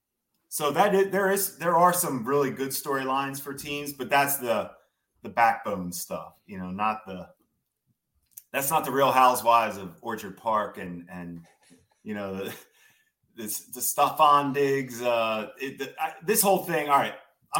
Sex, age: male, 30-49